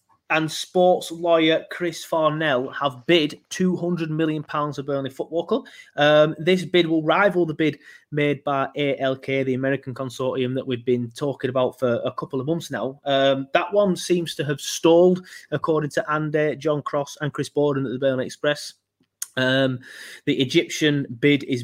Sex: male